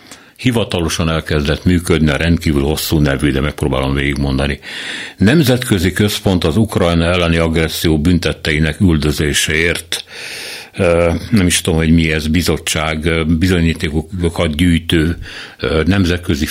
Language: Hungarian